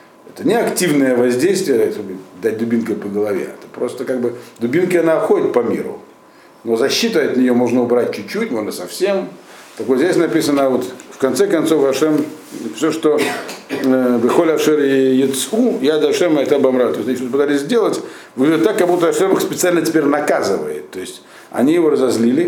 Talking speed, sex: 170 wpm, male